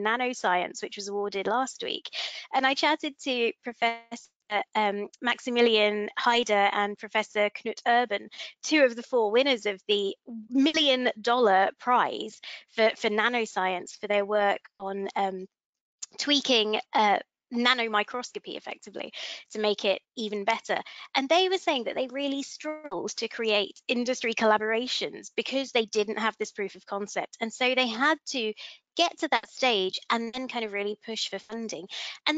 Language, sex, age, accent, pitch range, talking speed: English, female, 20-39, British, 210-265 Hz, 155 wpm